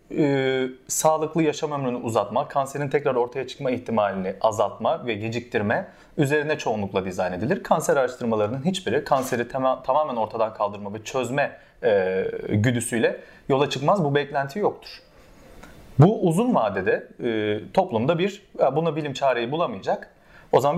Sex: male